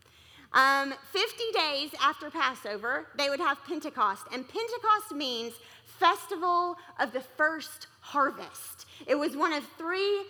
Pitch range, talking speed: 260-350 Hz, 130 wpm